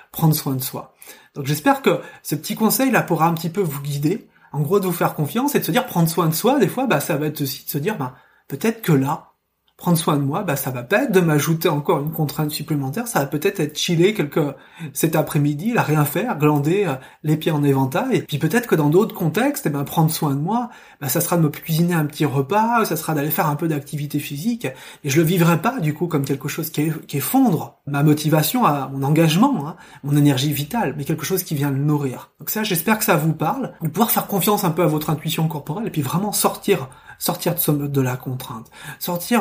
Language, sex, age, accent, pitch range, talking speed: French, male, 30-49, French, 145-180 Hz, 250 wpm